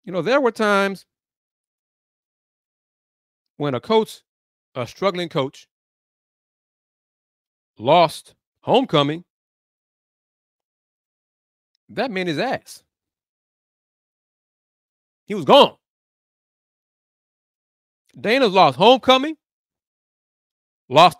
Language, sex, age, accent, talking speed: English, male, 40-59, American, 70 wpm